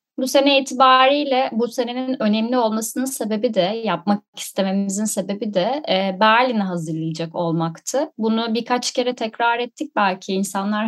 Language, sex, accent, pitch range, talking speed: Turkish, female, native, 185-245 Hz, 125 wpm